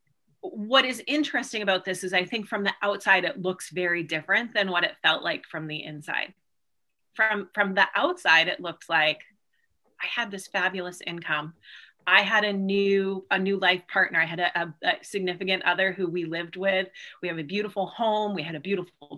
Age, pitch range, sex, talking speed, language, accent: 30-49, 180-245 Hz, female, 195 wpm, English, American